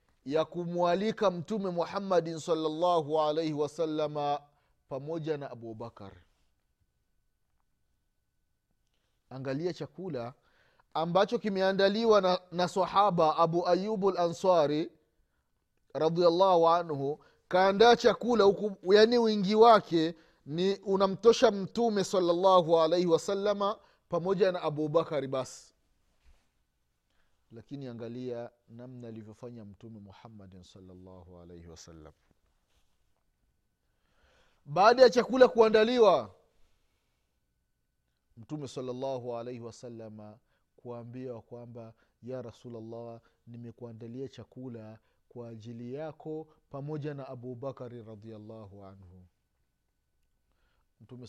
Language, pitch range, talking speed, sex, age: Swahili, 115-180 Hz, 90 wpm, male, 30-49